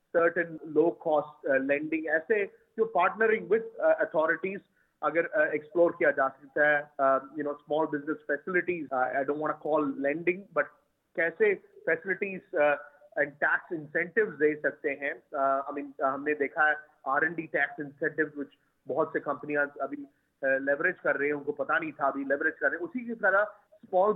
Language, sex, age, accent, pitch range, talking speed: Hindi, male, 30-49, native, 145-185 Hz, 180 wpm